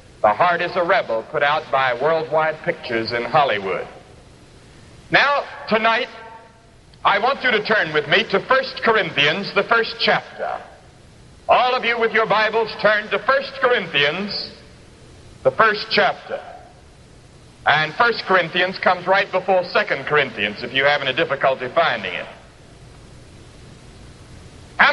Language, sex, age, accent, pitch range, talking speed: English, male, 60-79, American, 180-270 Hz, 135 wpm